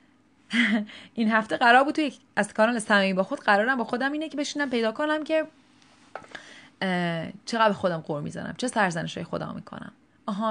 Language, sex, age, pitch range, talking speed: Persian, female, 30-49, 185-270 Hz, 165 wpm